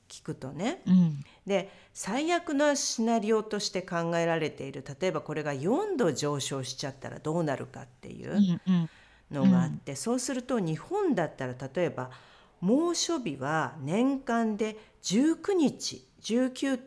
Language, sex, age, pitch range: Japanese, female, 50-69, 140-215 Hz